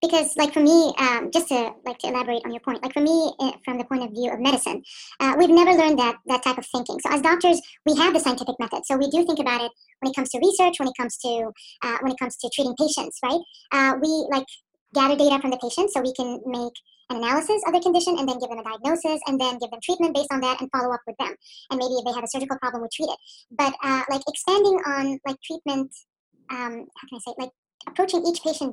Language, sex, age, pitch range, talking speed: English, male, 30-49, 255-325 Hz, 265 wpm